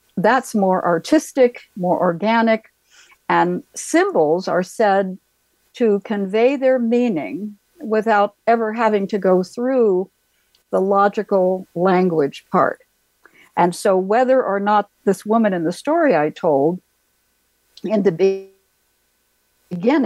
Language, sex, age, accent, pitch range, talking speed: English, female, 60-79, American, 170-215 Hz, 115 wpm